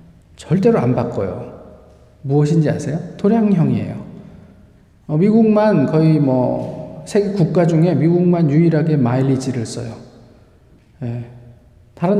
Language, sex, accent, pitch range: Korean, male, native, 135-180 Hz